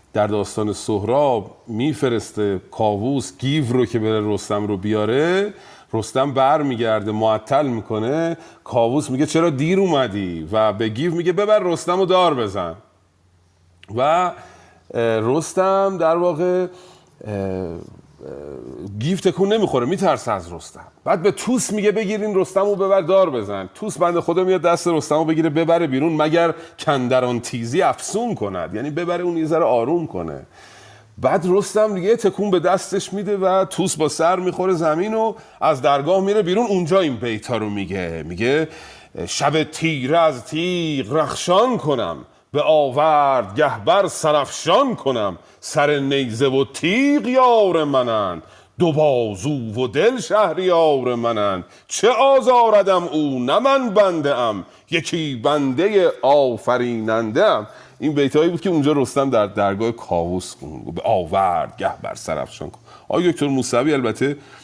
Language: Persian